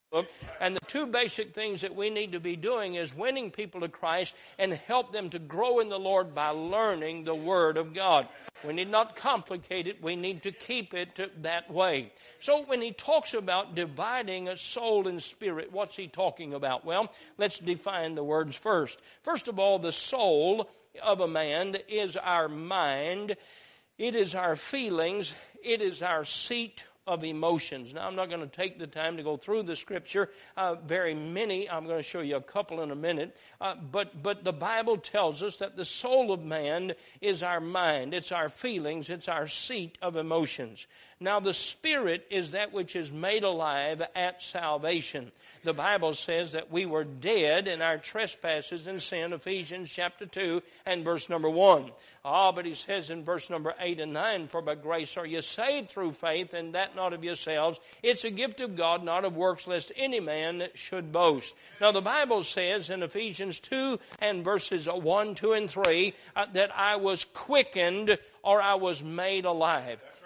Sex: male